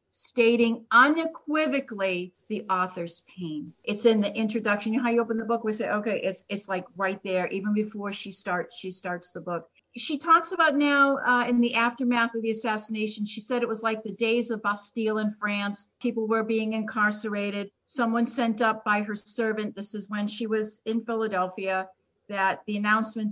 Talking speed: 190 wpm